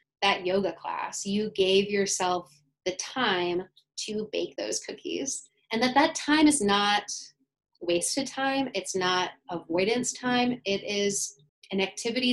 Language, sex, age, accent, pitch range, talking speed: English, female, 20-39, American, 175-225 Hz, 135 wpm